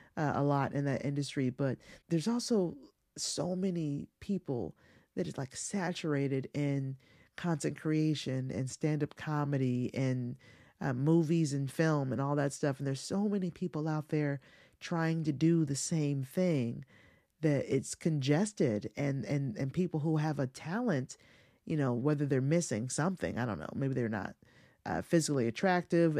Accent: American